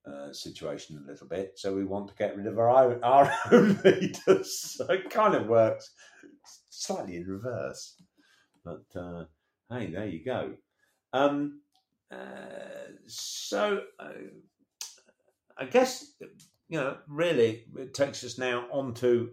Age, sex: 50-69, male